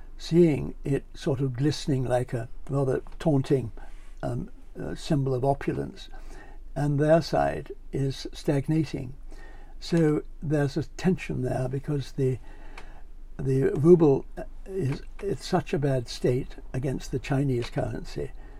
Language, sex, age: English, male, 60-79